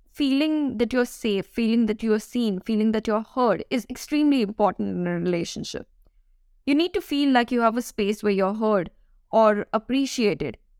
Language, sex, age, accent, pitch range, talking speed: English, female, 20-39, Indian, 200-240 Hz, 180 wpm